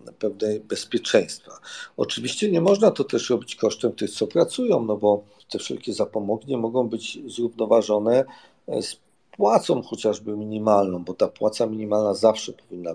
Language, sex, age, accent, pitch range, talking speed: Polish, male, 50-69, native, 100-130 Hz, 140 wpm